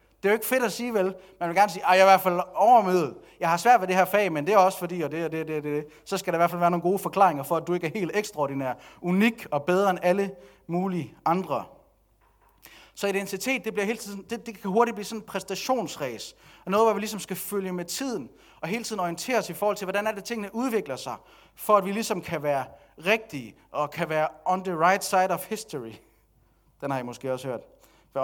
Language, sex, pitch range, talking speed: Danish, male, 145-200 Hz, 255 wpm